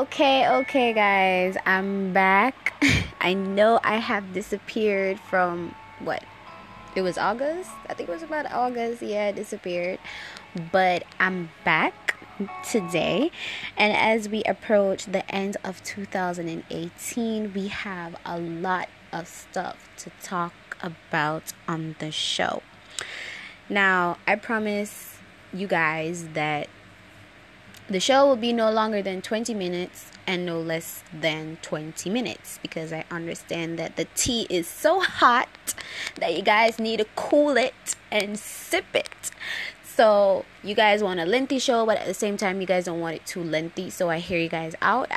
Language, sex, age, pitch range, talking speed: English, female, 20-39, 165-210 Hz, 150 wpm